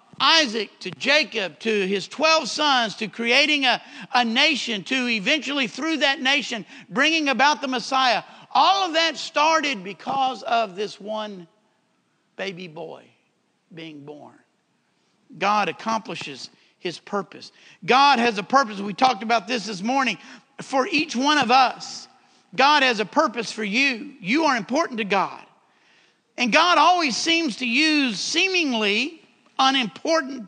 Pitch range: 215-275 Hz